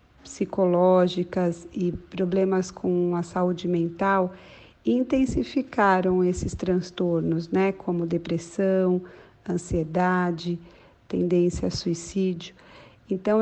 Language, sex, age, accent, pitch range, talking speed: Portuguese, female, 40-59, Brazilian, 180-200 Hz, 80 wpm